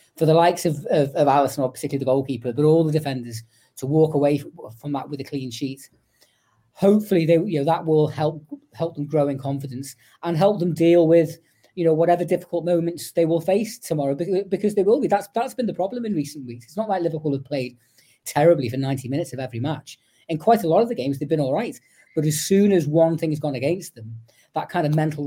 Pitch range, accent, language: 130-165 Hz, British, English